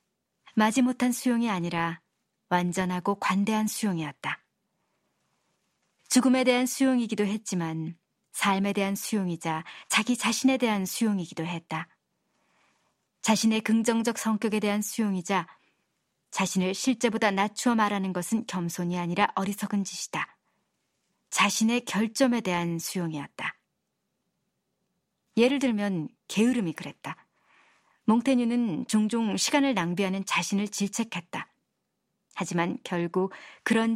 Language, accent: Korean, native